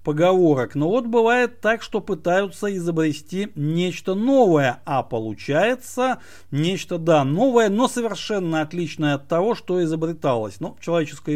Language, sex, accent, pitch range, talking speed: Russian, male, native, 145-210 Hz, 130 wpm